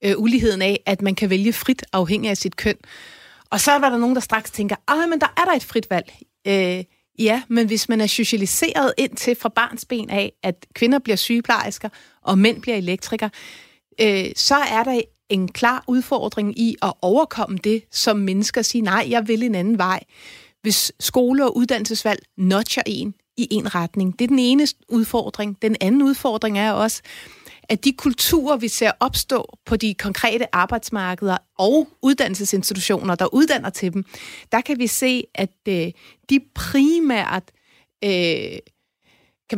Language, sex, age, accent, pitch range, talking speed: Danish, female, 30-49, native, 190-235 Hz, 165 wpm